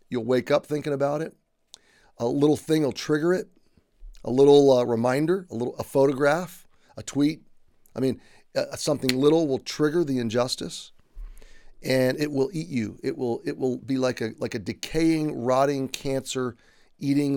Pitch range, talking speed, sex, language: 120-150 Hz, 165 wpm, male, English